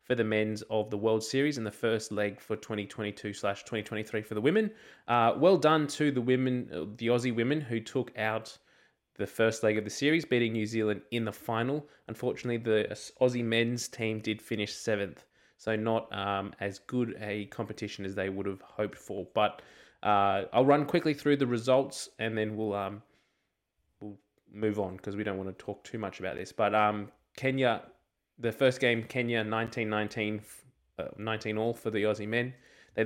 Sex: male